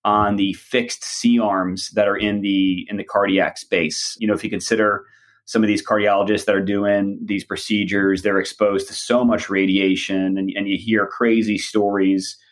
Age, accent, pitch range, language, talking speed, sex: 30-49, American, 100-110 Hz, English, 180 wpm, male